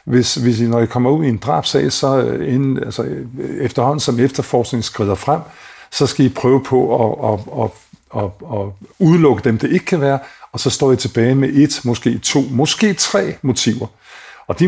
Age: 50-69